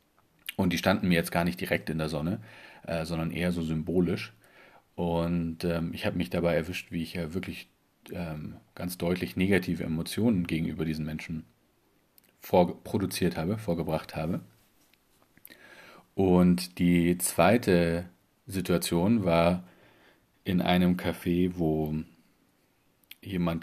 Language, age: German, 40-59